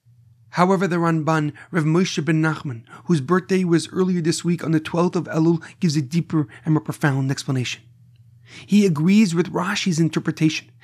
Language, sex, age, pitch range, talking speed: English, male, 30-49, 155-190 Hz, 165 wpm